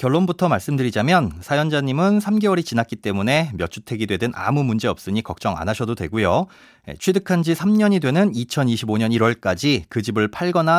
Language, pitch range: Korean, 110-170 Hz